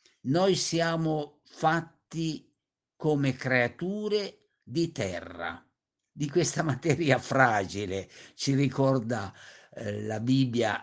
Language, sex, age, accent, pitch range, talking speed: Italian, male, 60-79, native, 120-175 Hz, 85 wpm